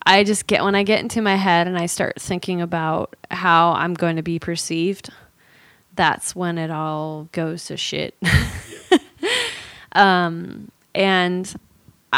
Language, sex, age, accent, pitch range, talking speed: English, female, 20-39, American, 170-210 Hz, 145 wpm